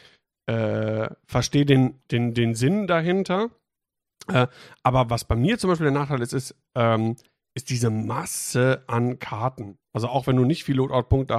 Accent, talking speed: German, 165 wpm